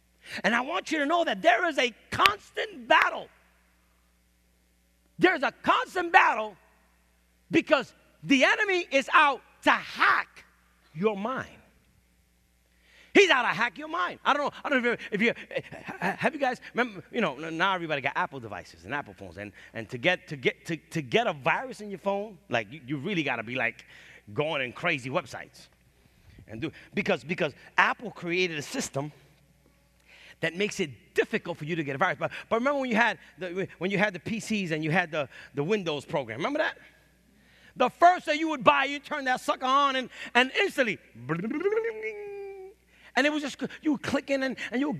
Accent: American